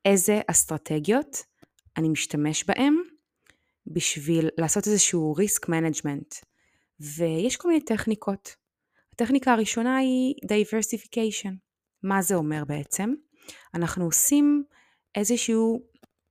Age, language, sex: 20-39, Hebrew, female